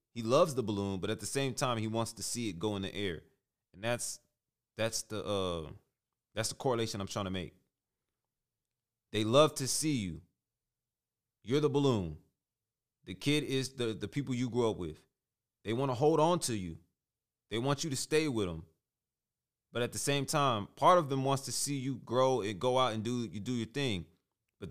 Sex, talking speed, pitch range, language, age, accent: male, 205 wpm, 100-125 Hz, English, 30-49, American